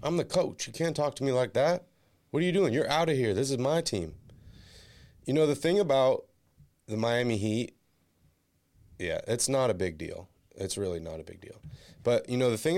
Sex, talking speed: male, 220 wpm